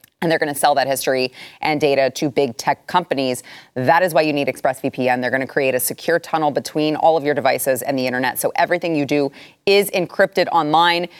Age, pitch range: 30-49, 145-200 Hz